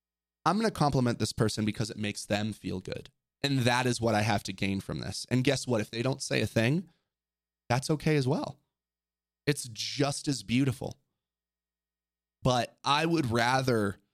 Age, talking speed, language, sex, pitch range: 20-39, 185 wpm, English, male, 95-125 Hz